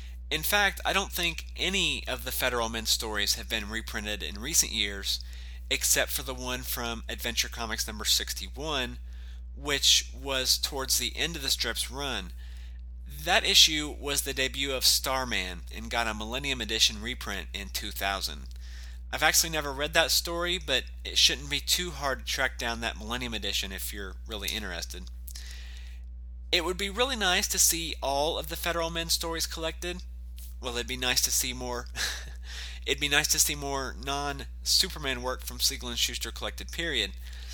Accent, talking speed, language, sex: American, 170 wpm, English, male